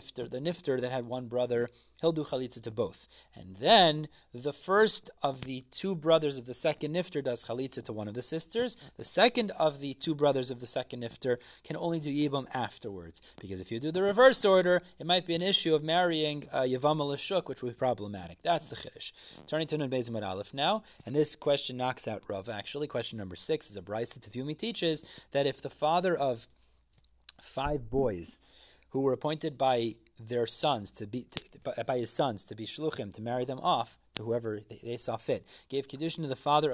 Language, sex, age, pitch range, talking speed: English, male, 30-49, 125-160 Hz, 205 wpm